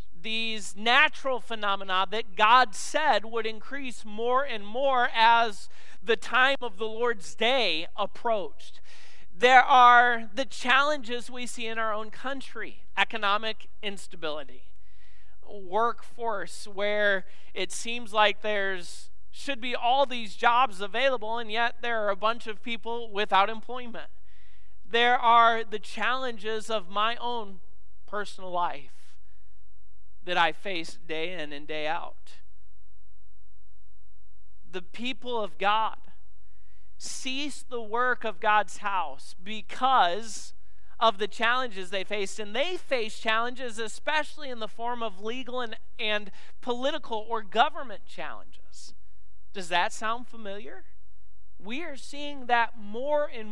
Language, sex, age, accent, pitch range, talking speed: English, male, 40-59, American, 170-240 Hz, 125 wpm